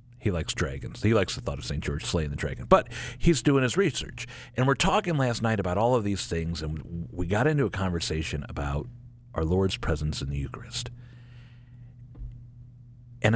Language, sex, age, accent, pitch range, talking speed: English, male, 50-69, American, 80-120 Hz, 190 wpm